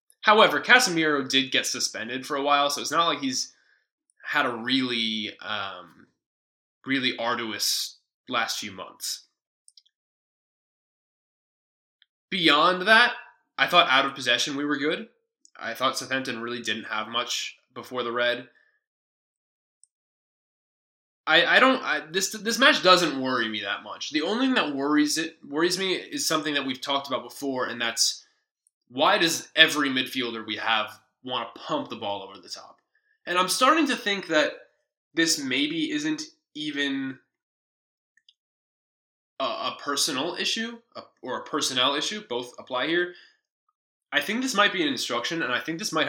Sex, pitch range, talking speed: male, 120-185 Hz, 155 wpm